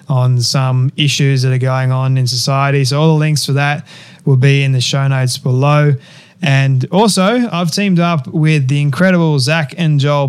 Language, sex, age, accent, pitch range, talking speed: English, male, 20-39, Australian, 135-150 Hz, 190 wpm